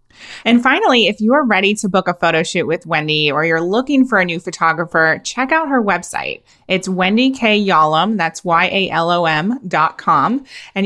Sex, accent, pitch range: female, American, 170-215 Hz